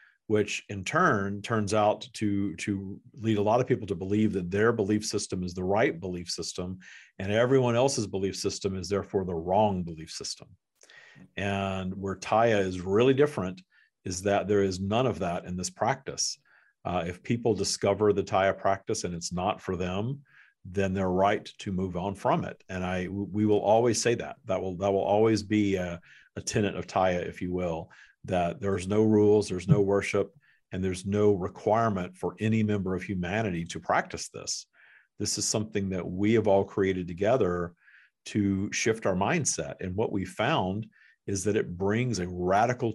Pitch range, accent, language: 90-105 Hz, American, English